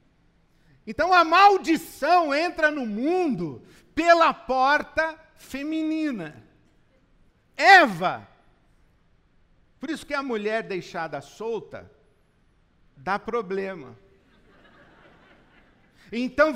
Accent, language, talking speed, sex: Brazilian, Portuguese, 75 wpm, male